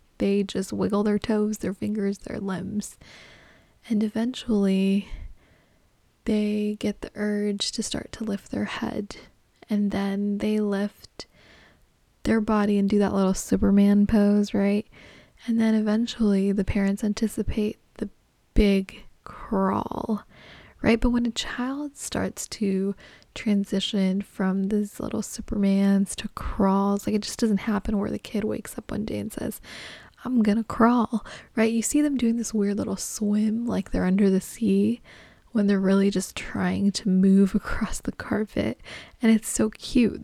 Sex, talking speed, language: female, 155 wpm, English